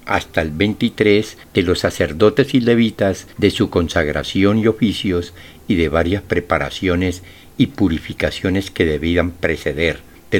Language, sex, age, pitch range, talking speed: Spanish, male, 60-79, 85-110 Hz, 135 wpm